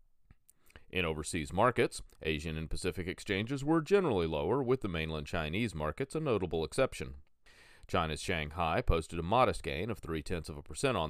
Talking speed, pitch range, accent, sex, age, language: 170 wpm, 75-100 Hz, American, male, 40-59, English